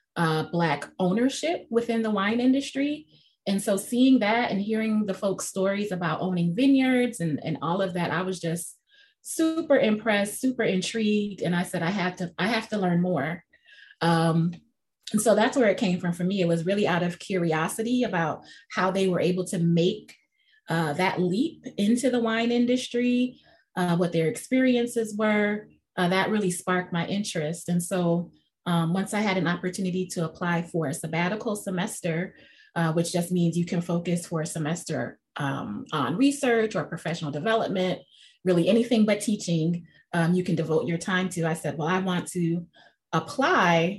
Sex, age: female, 20-39